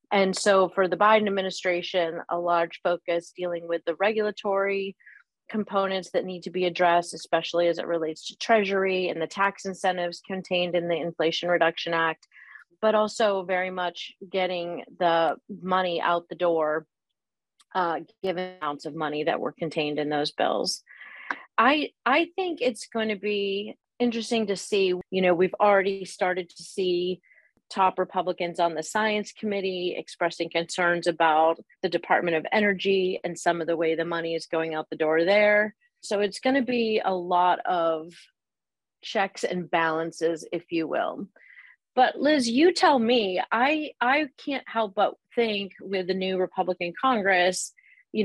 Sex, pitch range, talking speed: female, 170-205 Hz, 160 wpm